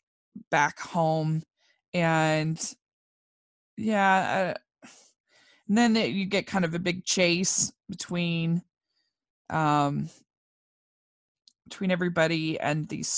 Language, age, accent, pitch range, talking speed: English, 20-39, American, 155-185 Hz, 90 wpm